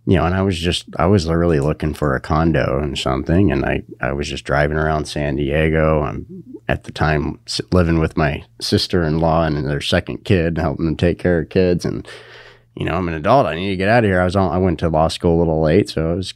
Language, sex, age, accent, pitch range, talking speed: English, male, 30-49, American, 80-100 Hz, 260 wpm